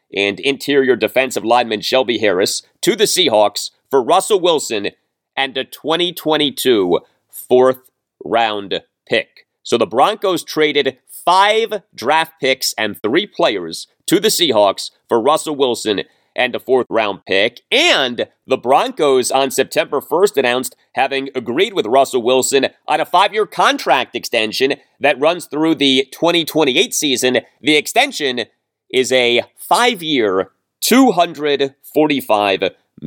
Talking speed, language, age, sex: 125 wpm, English, 30-49, male